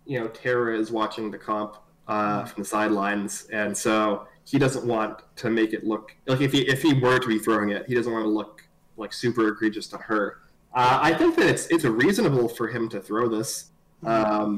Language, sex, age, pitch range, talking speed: English, male, 20-39, 110-125 Hz, 220 wpm